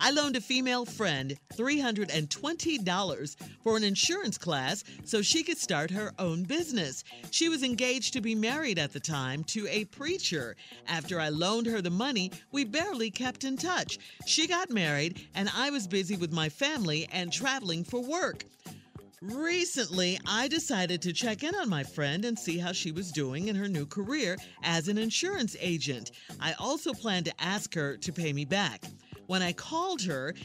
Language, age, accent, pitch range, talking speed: English, 50-69, American, 175-265 Hz, 180 wpm